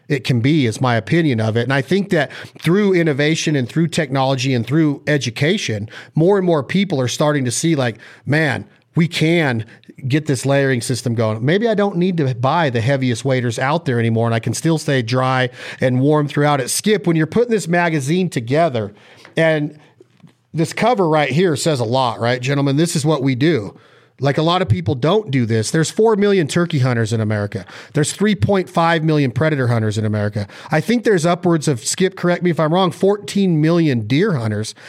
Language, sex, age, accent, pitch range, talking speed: English, male, 40-59, American, 130-170 Hz, 205 wpm